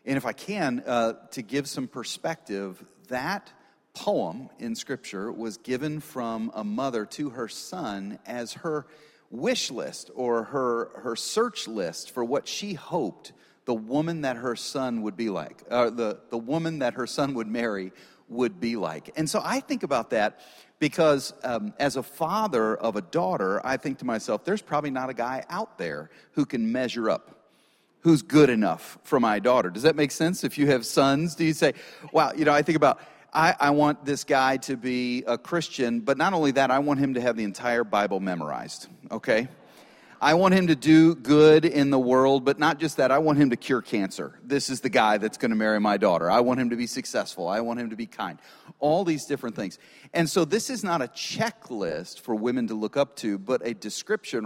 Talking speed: 210 wpm